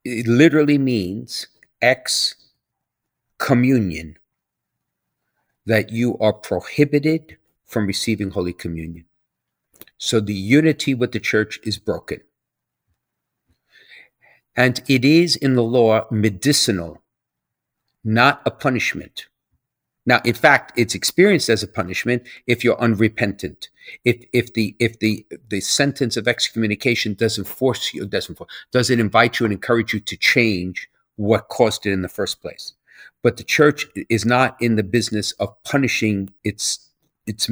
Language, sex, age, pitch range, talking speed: English, male, 50-69, 105-125 Hz, 135 wpm